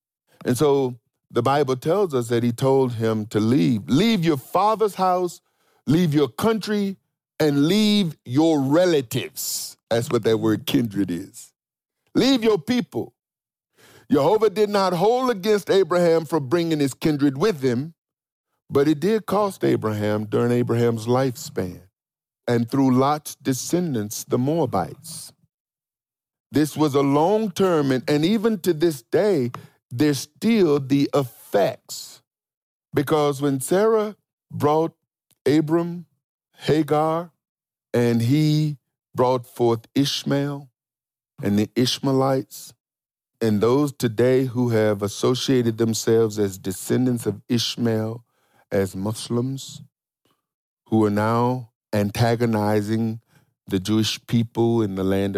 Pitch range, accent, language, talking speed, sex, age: 115-160 Hz, American, English, 115 wpm, male, 50-69